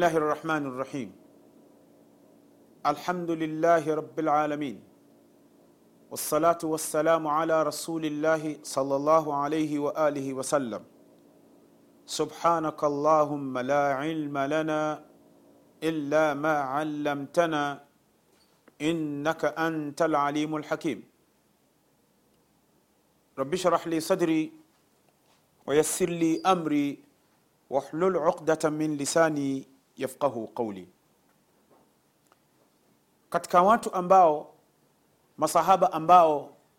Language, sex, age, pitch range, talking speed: Swahili, male, 40-59, 145-170 Hz, 70 wpm